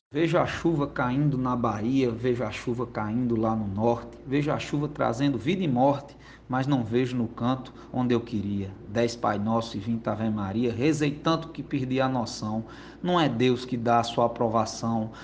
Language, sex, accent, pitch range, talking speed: Portuguese, male, Brazilian, 115-145 Hz, 195 wpm